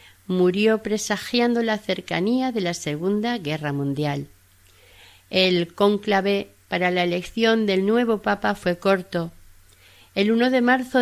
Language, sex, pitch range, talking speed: Spanish, female, 175-235 Hz, 125 wpm